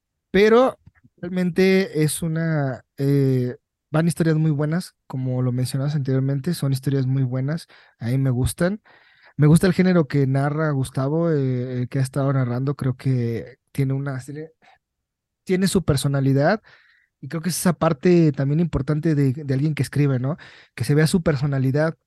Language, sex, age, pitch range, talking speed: Spanish, male, 30-49, 135-160 Hz, 165 wpm